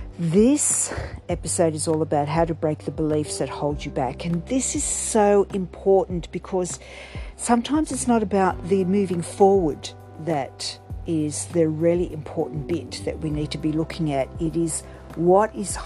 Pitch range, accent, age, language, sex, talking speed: 140-180 Hz, Australian, 50-69, English, female, 165 wpm